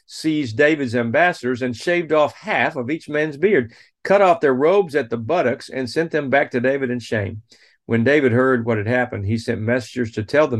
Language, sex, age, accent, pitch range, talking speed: English, male, 50-69, American, 105-130 Hz, 215 wpm